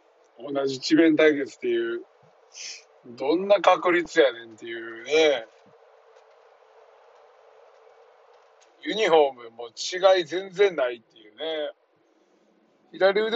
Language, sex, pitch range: Japanese, male, 130-200 Hz